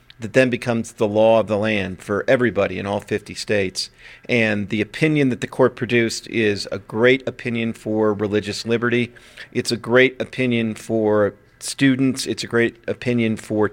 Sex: male